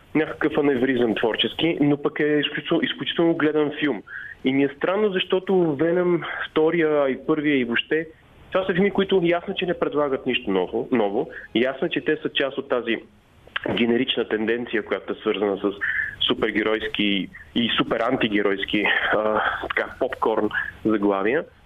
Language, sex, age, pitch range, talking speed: Bulgarian, male, 30-49, 120-160 Hz, 145 wpm